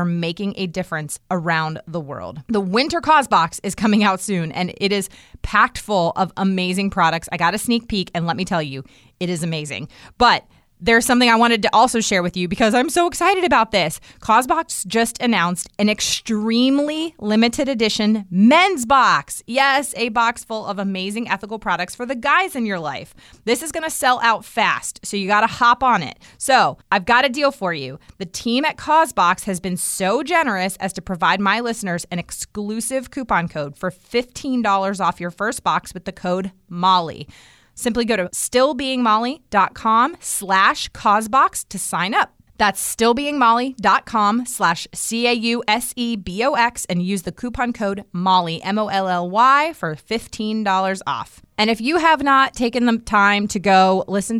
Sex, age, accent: female, 30-49, American